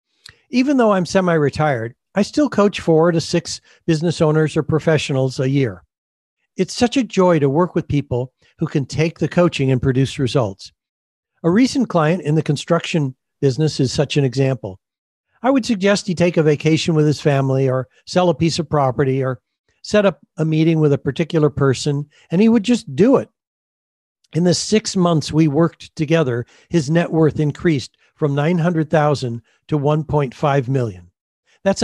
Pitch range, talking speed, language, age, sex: 135-180 Hz, 170 wpm, English, 60-79, male